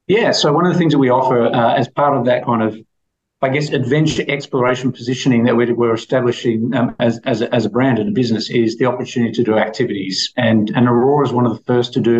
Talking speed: 250 wpm